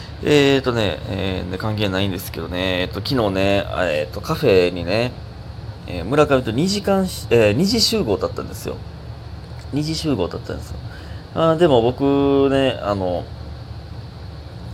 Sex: male